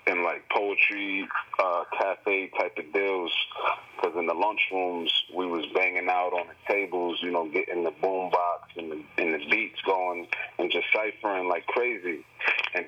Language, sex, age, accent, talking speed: English, male, 30-49, American, 160 wpm